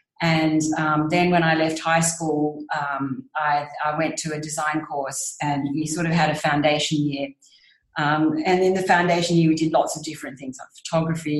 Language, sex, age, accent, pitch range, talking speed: English, female, 40-59, Australian, 145-160 Hz, 200 wpm